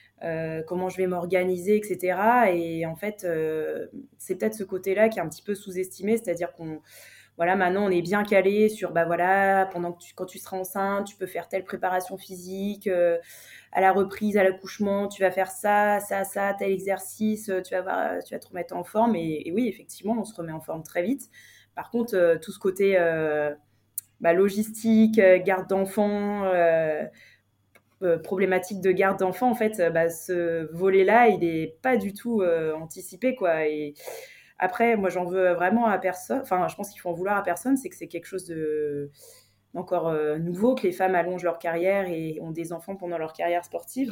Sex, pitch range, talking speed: female, 165-200 Hz, 200 wpm